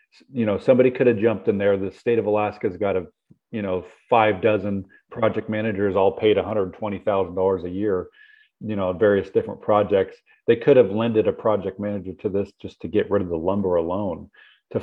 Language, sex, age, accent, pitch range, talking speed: English, male, 40-59, American, 95-120 Hz, 200 wpm